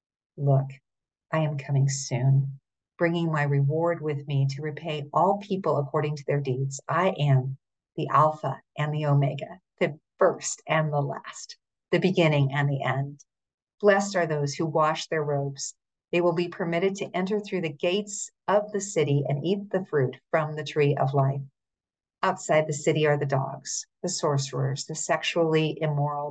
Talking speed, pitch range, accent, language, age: 170 wpm, 140-170 Hz, American, English, 50-69